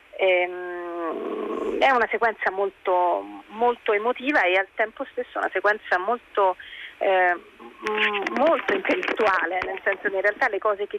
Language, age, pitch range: Italian, 30-49, 175-220 Hz